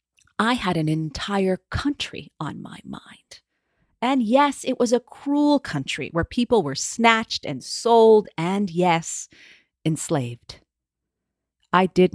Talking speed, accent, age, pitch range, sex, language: 130 wpm, American, 40-59, 140-200 Hz, female, English